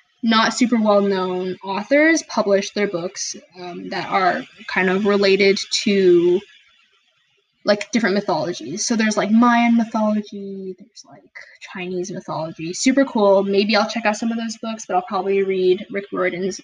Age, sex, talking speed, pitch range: 10-29, female, 150 wpm, 195-245 Hz